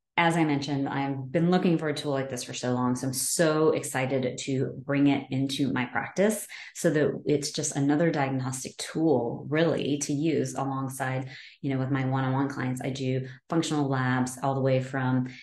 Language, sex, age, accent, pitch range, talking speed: English, female, 30-49, American, 130-150 Hz, 190 wpm